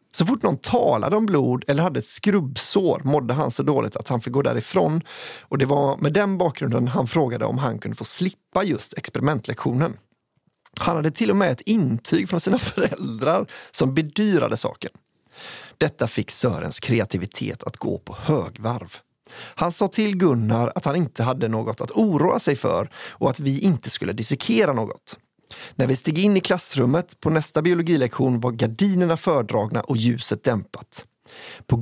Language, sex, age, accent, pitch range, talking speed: English, male, 30-49, Swedish, 125-180 Hz, 175 wpm